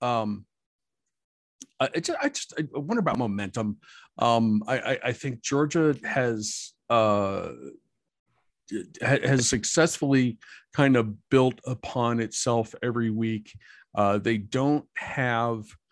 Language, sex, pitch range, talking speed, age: English, male, 105-130 Hz, 110 wpm, 50-69